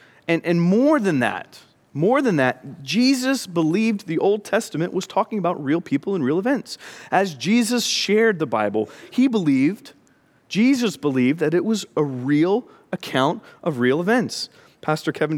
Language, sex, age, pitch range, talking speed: English, male, 40-59, 150-240 Hz, 160 wpm